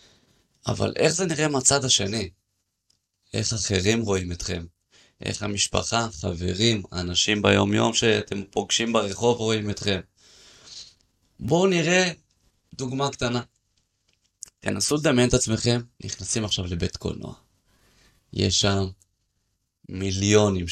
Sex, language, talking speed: male, Hebrew, 100 wpm